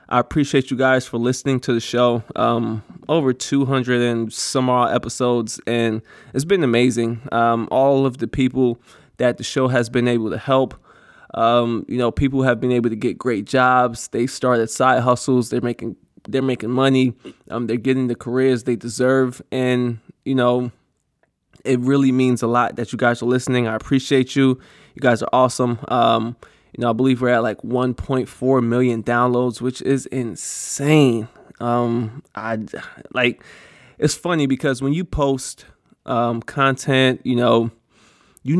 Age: 20-39